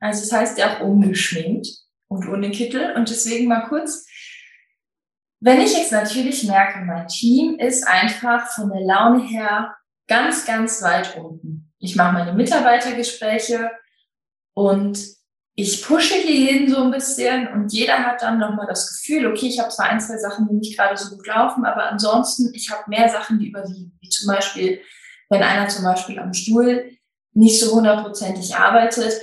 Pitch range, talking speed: 200-240 Hz, 170 wpm